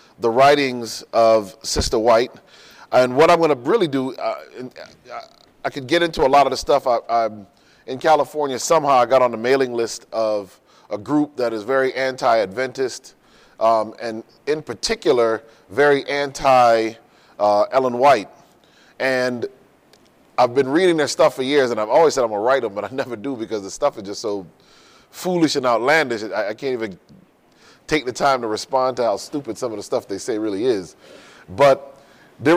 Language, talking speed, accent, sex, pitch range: English, 180 wpm, American, male, 120-155 Hz